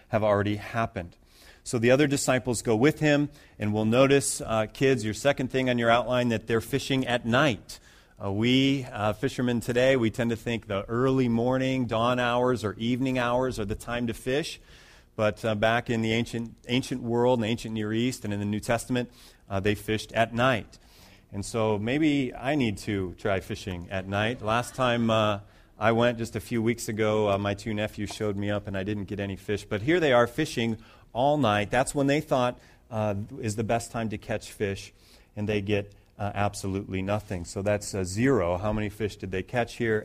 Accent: American